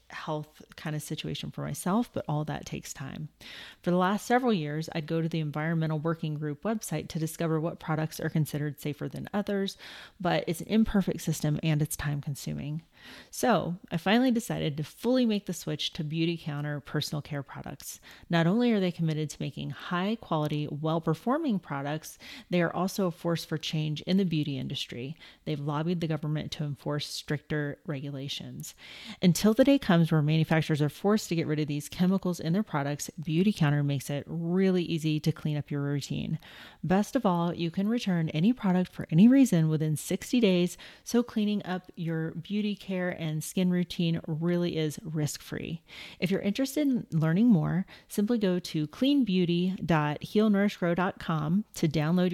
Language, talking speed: English, 175 wpm